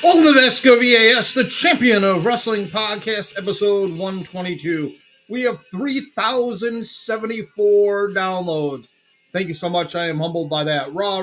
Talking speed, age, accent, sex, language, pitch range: 140 wpm, 30-49, American, male, English, 155-215 Hz